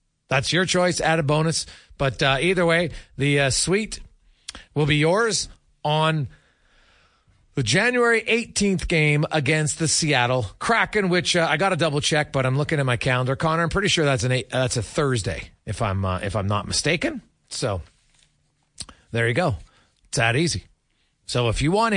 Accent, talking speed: American, 185 wpm